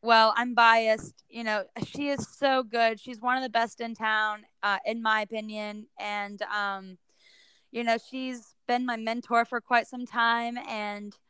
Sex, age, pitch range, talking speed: female, 10-29, 205-250 Hz, 175 wpm